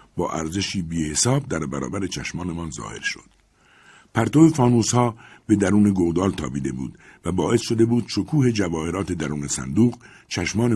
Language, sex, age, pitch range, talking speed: Persian, male, 60-79, 85-125 Hz, 140 wpm